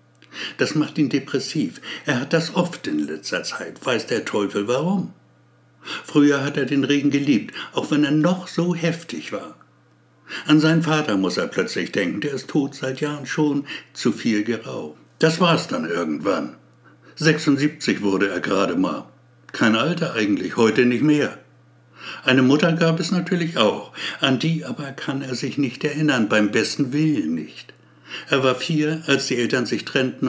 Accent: German